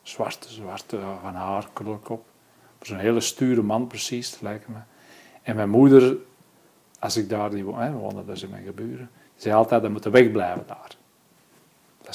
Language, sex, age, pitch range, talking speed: Dutch, male, 50-69, 105-120 Hz, 165 wpm